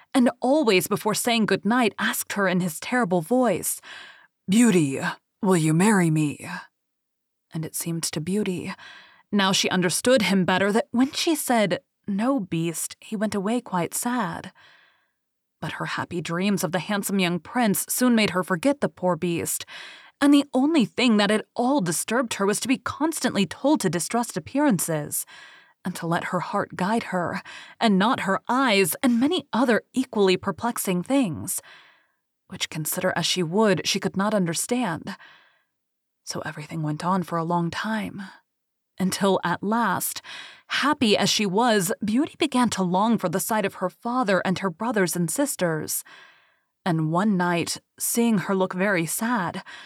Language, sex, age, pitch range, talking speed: English, female, 20-39, 180-245 Hz, 160 wpm